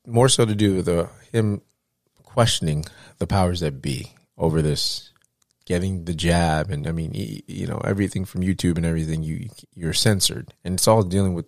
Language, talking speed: English, 195 wpm